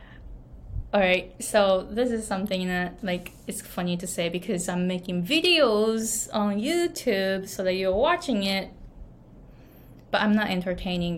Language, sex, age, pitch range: Japanese, female, 20-39, 185-240 Hz